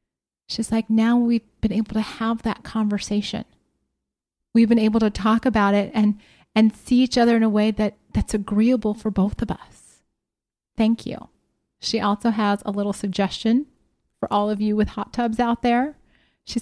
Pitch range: 200-230 Hz